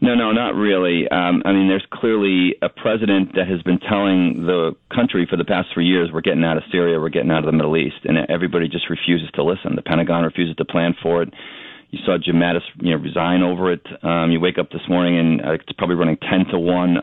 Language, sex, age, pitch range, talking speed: English, male, 40-59, 85-95 Hz, 245 wpm